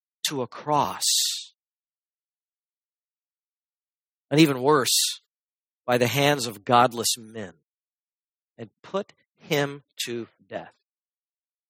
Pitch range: 140-200 Hz